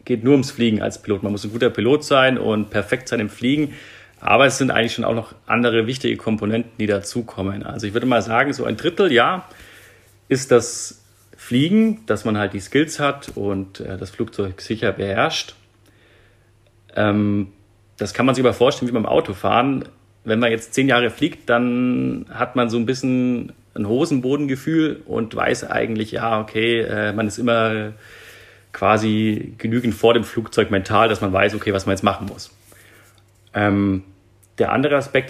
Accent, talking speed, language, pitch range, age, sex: German, 175 wpm, German, 100-120 Hz, 40-59, male